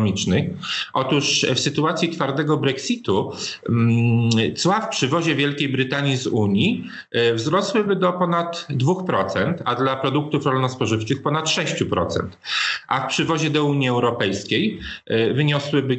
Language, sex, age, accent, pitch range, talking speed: Polish, male, 40-59, native, 115-155 Hz, 115 wpm